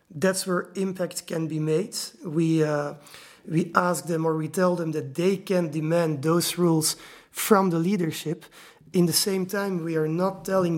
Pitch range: 155-180 Hz